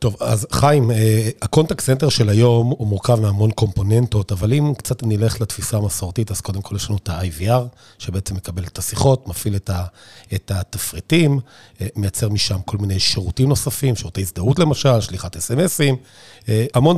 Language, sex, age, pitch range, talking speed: Hebrew, male, 40-59, 105-135 Hz, 160 wpm